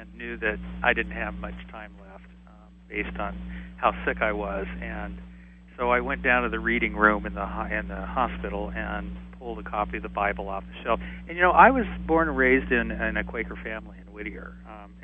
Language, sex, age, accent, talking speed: English, male, 40-59, American, 225 wpm